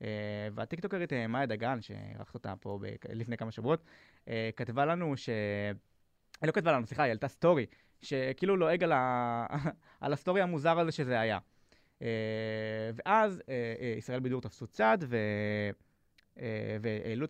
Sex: male